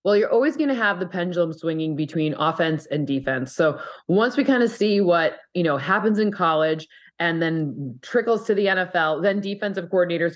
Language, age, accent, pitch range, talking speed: English, 20-39, American, 160-200 Hz, 195 wpm